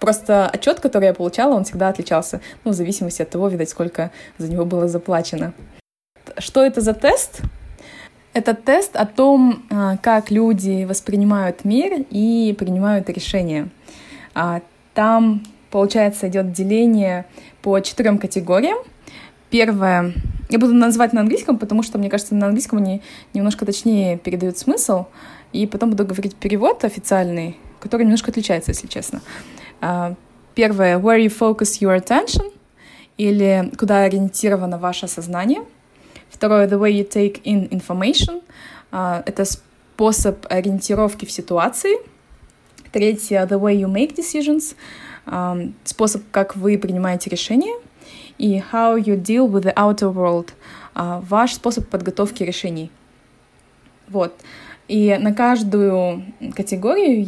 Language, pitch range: Russian, 185-225 Hz